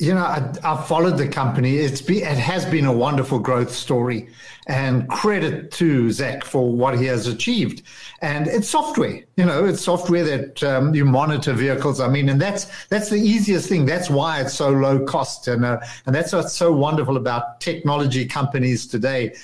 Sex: male